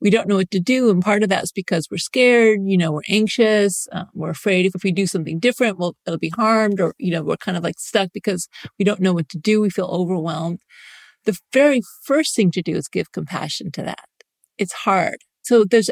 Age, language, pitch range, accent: 40-59, English, 180-235 Hz, American